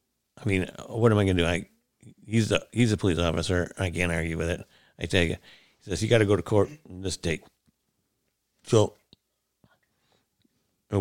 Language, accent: English, American